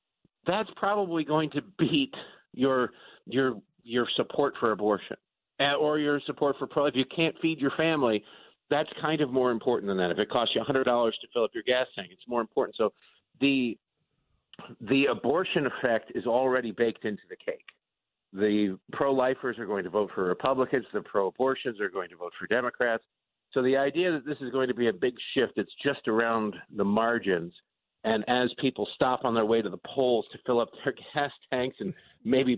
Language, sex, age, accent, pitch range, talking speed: English, male, 50-69, American, 120-150 Hz, 195 wpm